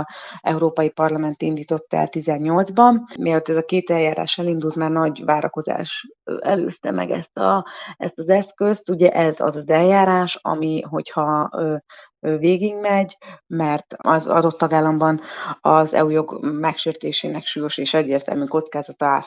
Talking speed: 120 wpm